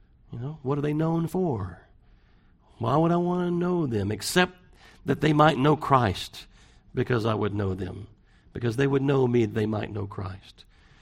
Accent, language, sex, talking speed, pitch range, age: American, English, male, 185 wpm, 100-135 Hz, 50-69